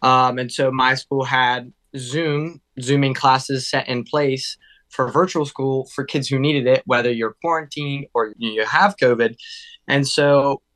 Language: English